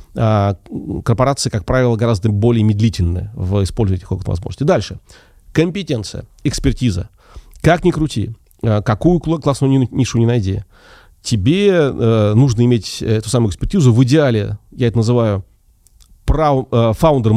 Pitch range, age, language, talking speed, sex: 100-130 Hz, 30-49, Russian, 115 wpm, male